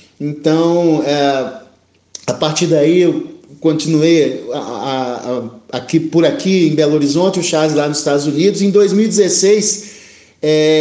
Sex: male